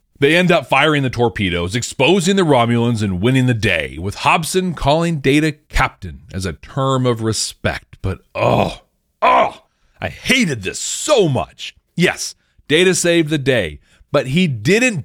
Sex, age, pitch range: male, 40-59, 105-155 Hz